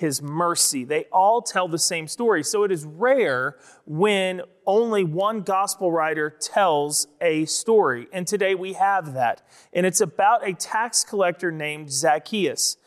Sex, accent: male, American